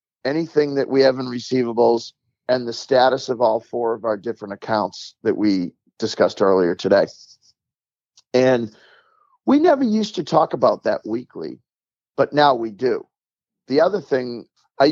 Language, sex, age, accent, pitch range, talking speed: English, male, 40-59, American, 115-145 Hz, 155 wpm